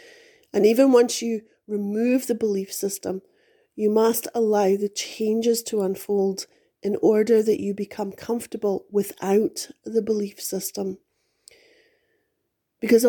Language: English